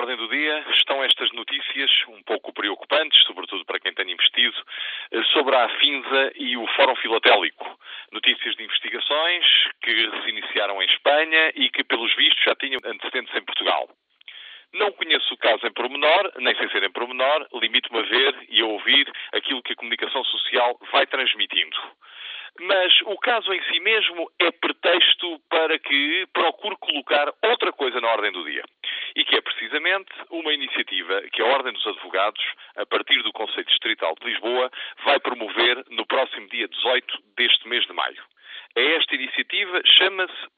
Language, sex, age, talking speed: Portuguese, male, 40-59, 165 wpm